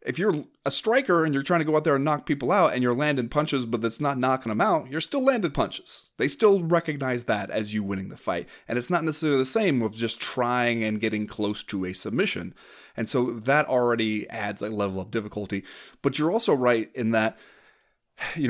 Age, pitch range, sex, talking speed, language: 30-49, 110-140 Hz, male, 225 wpm, English